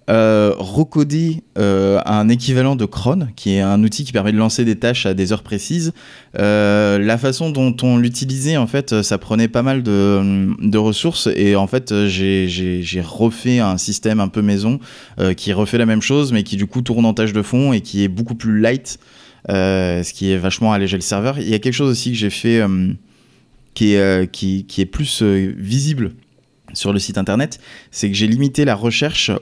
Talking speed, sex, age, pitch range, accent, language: 215 wpm, male, 20-39, 95-120 Hz, French, French